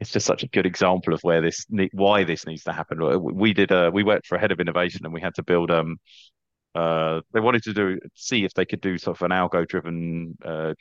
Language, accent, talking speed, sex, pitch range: English, British, 255 wpm, male, 90-115 Hz